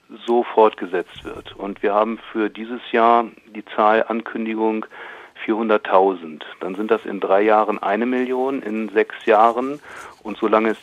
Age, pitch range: 40-59, 105-120 Hz